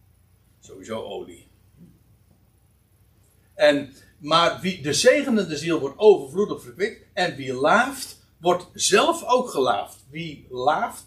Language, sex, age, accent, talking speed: Dutch, male, 60-79, Dutch, 110 wpm